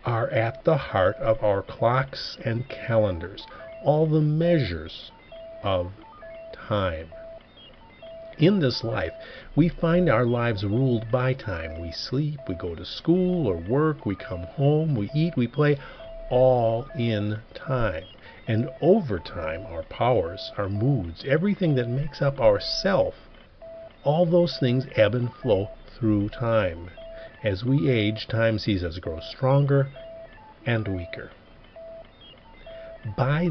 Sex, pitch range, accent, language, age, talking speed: male, 110-170 Hz, American, English, 50-69, 135 wpm